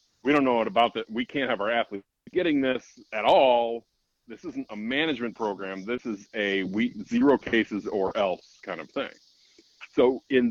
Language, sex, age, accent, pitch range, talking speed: English, male, 40-59, American, 100-130 Hz, 185 wpm